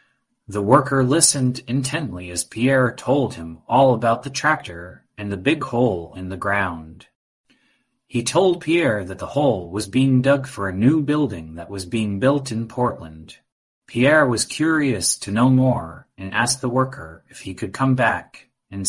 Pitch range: 95-135 Hz